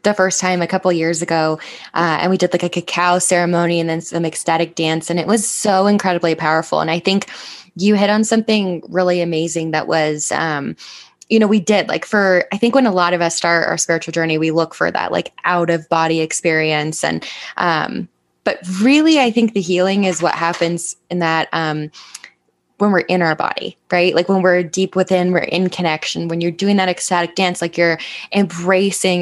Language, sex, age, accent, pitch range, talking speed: English, female, 20-39, American, 165-190 Hz, 210 wpm